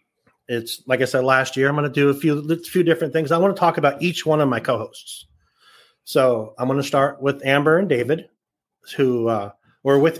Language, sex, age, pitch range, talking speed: English, male, 30-49, 125-150 Hz, 230 wpm